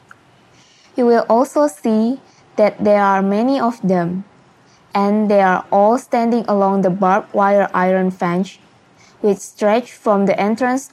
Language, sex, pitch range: Chinese, female, 190-220 Hz